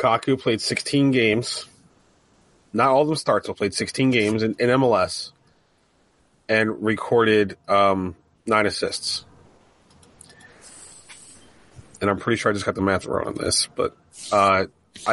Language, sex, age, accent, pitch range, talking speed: English, male, 30-49, American, 110-140 Hz, 140 wpm